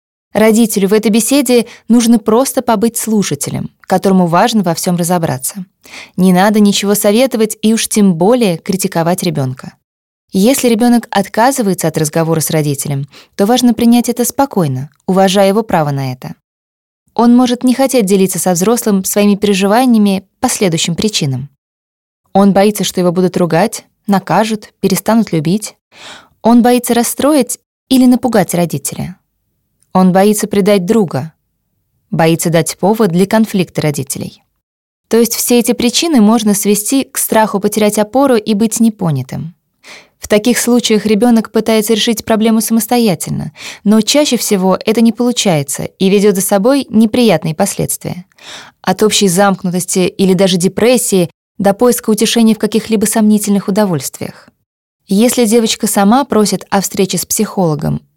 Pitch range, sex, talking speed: 180-230 Hz, female, 135 wpm